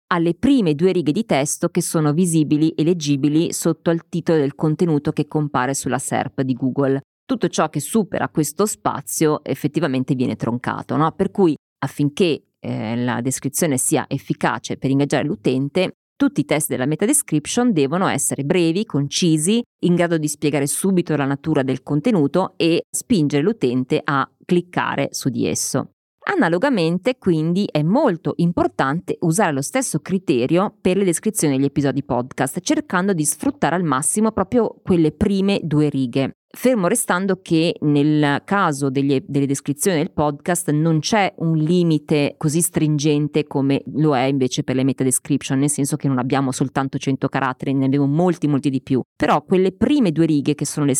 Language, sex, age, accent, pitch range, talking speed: Italian, female, 30-49, native, 140-180 Hz, 165 wpm